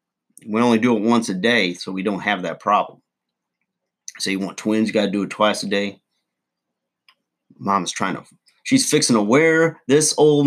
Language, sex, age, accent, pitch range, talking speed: English, male, 30-49, American, 105-135 Hz, 195 wpm